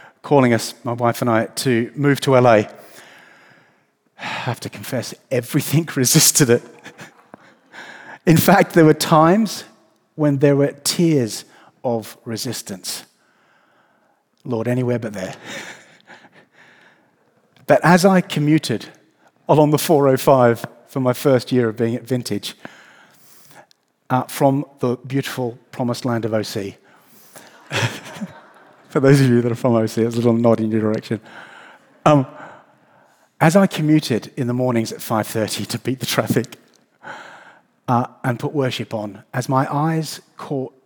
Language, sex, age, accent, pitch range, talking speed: English, male, 40-59, British, 120-150 Hz, 130 wpm